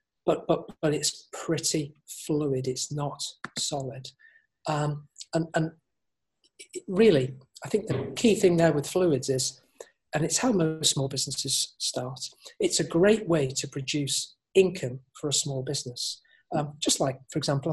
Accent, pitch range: British, 135-180 Hz